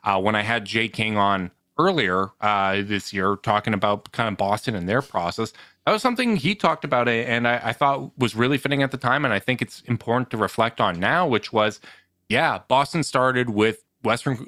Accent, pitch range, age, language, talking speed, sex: American, 105-135 Hz, 30-49, English, 215 wpm, male